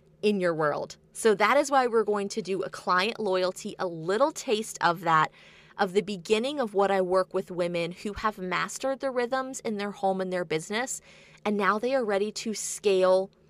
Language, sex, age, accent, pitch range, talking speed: English, female, 20-39, American, 185-230 Hz, 205 wpm